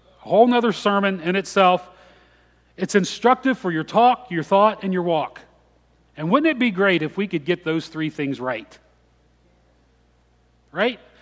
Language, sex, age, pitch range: English, male, 40-59, 150-205 Hz